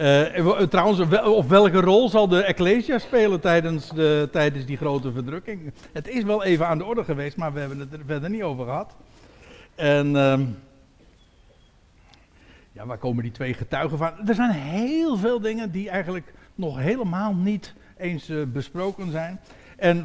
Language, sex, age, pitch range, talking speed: Dutch, male, 60-79, 140-195 Hz, 160 wpm